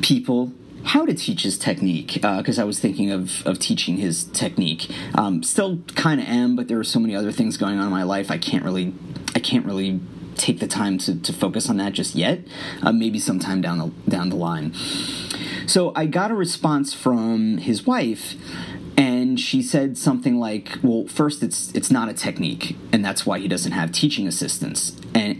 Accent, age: American, 30-49